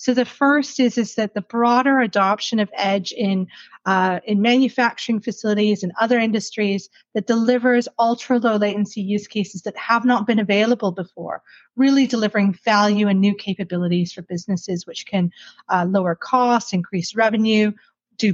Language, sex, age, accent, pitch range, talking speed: English, female, 30-49, American, 195-240 Hz, 155 wpm